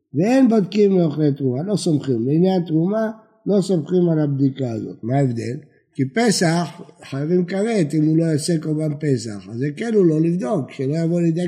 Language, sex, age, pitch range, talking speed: Hebrew, male, 60-79, 135-190 Hz, 180 wpm